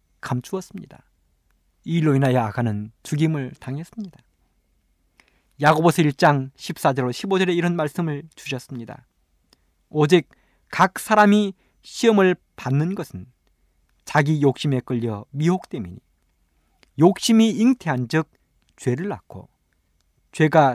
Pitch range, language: 115-185 Hz, Korean